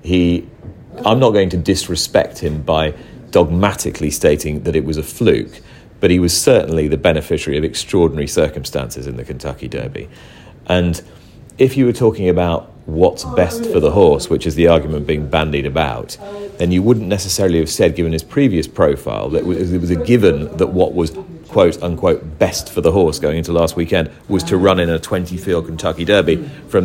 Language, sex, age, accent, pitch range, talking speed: English, male, 40-59, British, 80-95 Hz, 190 wpm